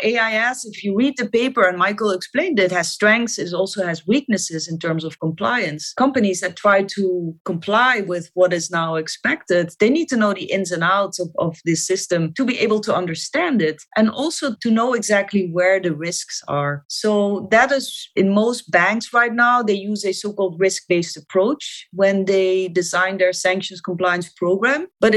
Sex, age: female, 30-49